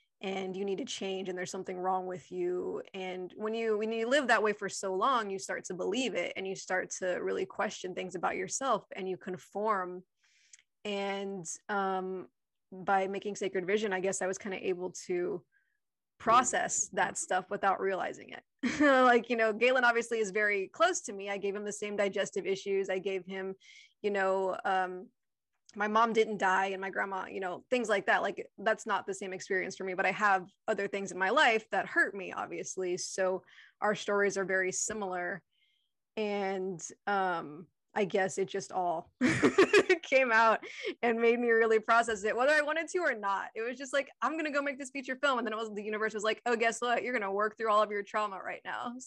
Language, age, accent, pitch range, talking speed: English, 20-39, American, 190-235 Hz, 215 wpm